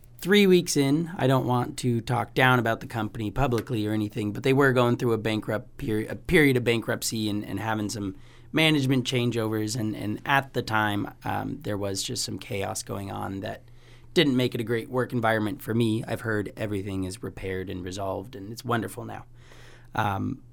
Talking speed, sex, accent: 200 wpm, male, American